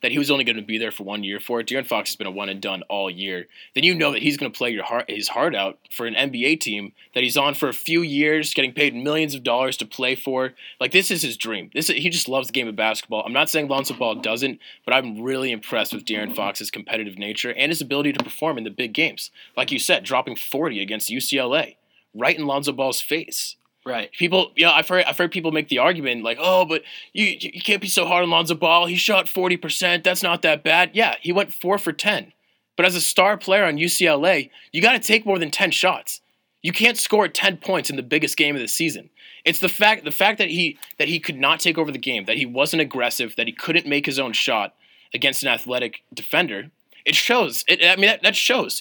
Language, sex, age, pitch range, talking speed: English, male, 20-39, 130-180 Hz, 250 wpm